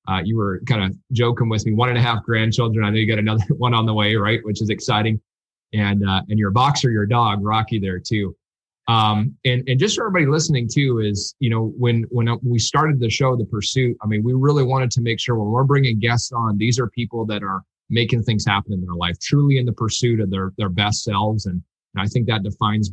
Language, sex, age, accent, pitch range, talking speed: English, male, 20-39, American, 100-120 Hz, 245 wpm